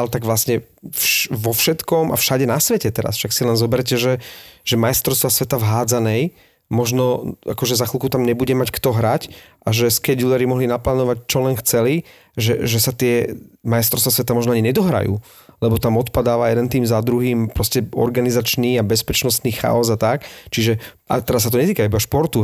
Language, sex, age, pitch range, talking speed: Slovak, male, 30-49, 115-125 Hz, 180 wpm